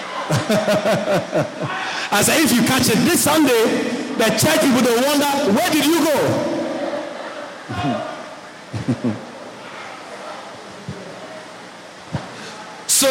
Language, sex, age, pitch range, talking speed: English, male, 50-69, 210-285 Hz, 80 wpm